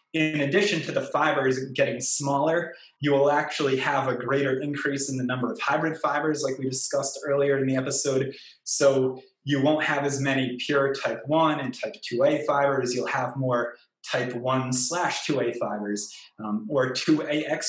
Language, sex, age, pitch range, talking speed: English, male, 20-39, 130-150 Hz, 175 wpm